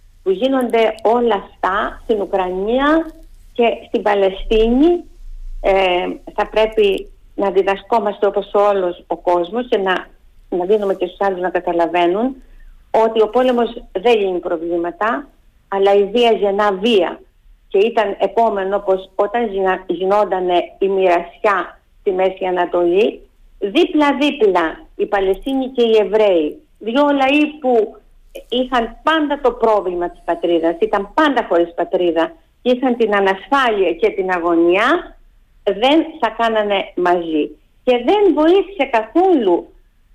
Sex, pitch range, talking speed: female, 190-250 Hz, 125 wpm